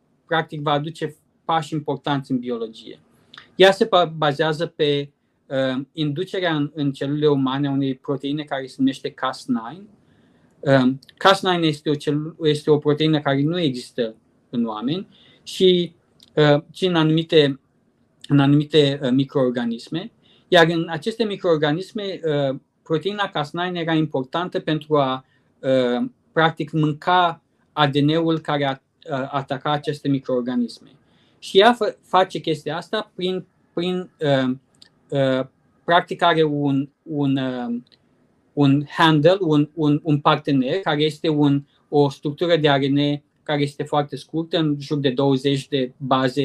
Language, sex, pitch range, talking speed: Romanian, male, 135-165 Hz, 130 wpm